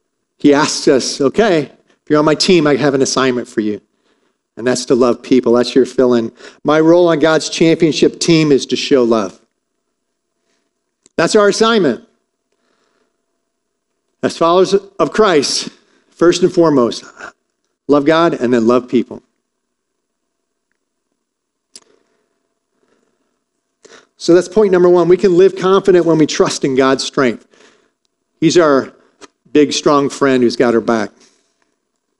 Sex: male